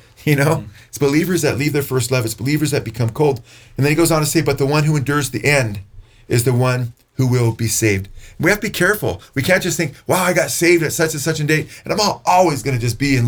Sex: male